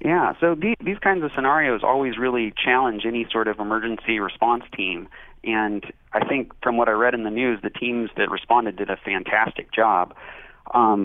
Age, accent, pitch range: 30-49, American, 105-120 Hz